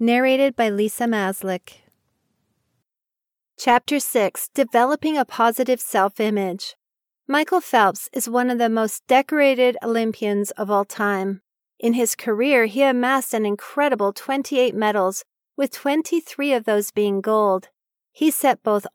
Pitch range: 205-255 Hz